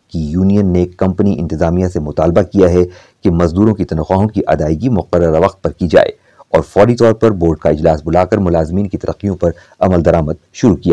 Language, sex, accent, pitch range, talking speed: Hindi, male, native, 85-105 Hz, 80 wpm